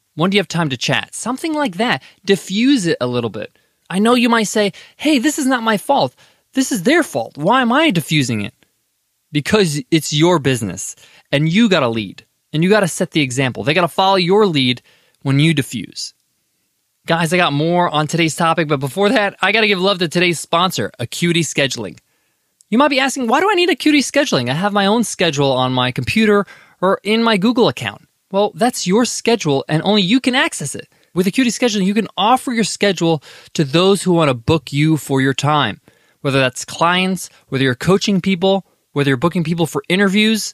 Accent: American